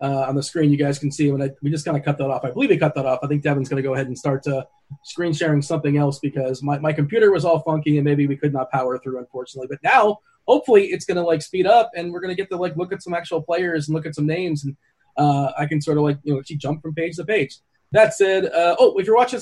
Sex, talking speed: male, 305 wpm